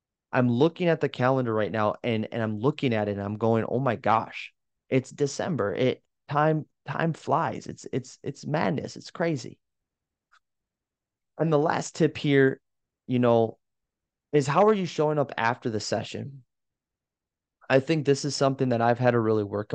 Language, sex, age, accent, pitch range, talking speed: English, male, 20-39, American, 105-130 Hz, 175 wpm